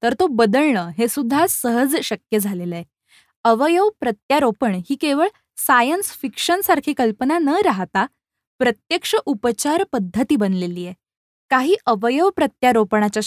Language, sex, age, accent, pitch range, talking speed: Marathi, female, 10-29, native, 210-280 Hz, 120 wpm